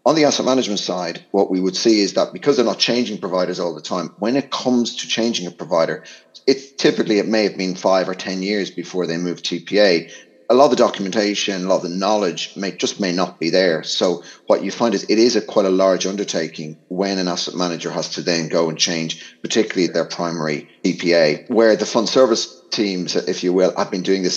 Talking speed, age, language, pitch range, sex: 230 wpm, 30-49, English, 85-110 Hz, male